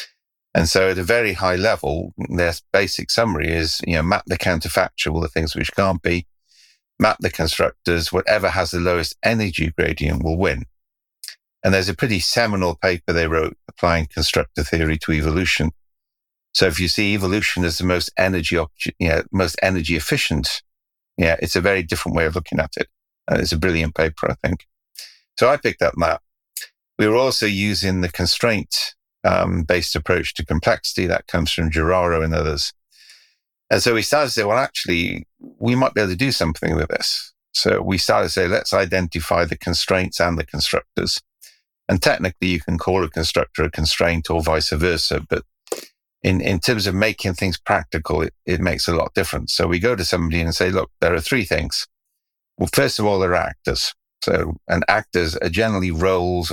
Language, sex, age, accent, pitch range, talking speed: English, male, 50-69, British, 80-95 Hz, 190 wpm